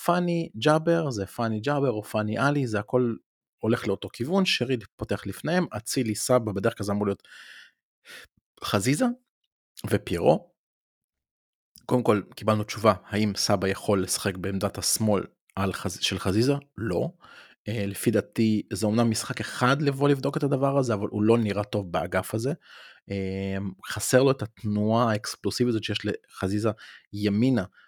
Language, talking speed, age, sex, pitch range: Hebrew, 140 wpm, 30-49, male, 100-120 Hz